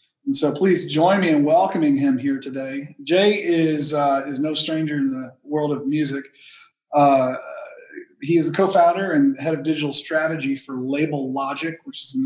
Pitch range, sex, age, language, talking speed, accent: 140-180 Hz, male, 40-59, English, 180 wpm, American